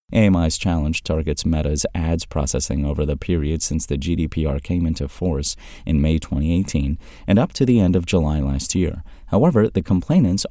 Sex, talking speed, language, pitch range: male, 170 wpm, English, 75-100 Hz